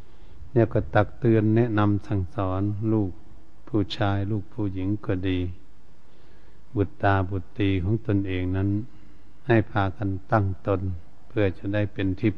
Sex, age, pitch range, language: male, 70-89, 95-110 Hz, Thai